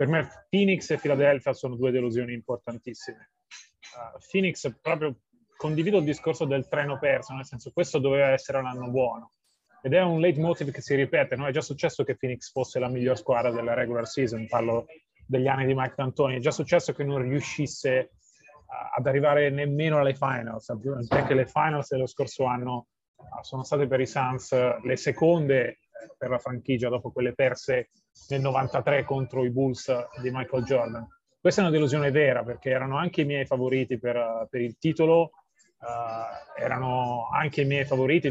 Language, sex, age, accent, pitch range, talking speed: Italian, male, 30-49, native, 130-160 Hz, 175 wpm